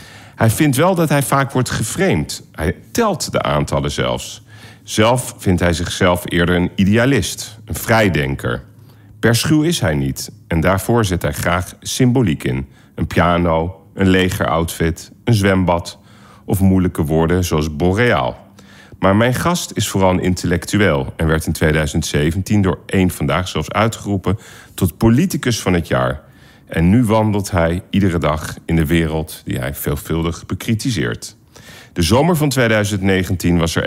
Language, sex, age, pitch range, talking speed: Dutch, male, 40-59, 85-115 Hz, 150 wpm